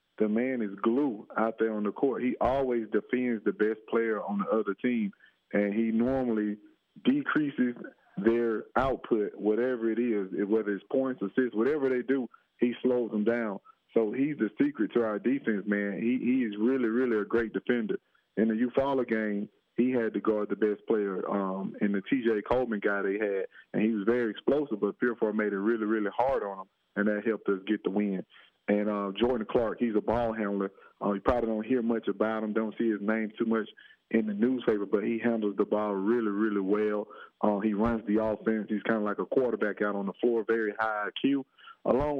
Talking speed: 210 wpm